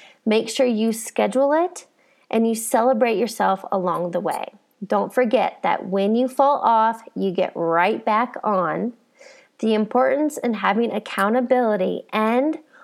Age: 20-39